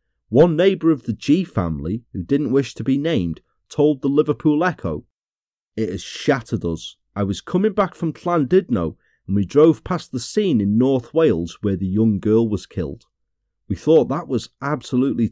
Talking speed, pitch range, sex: 180 wpm, 95-145 Hz, male